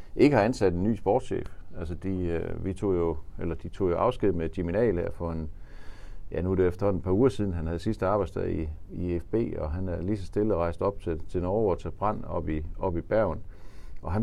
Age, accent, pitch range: 50-69, native, 85-115 Hz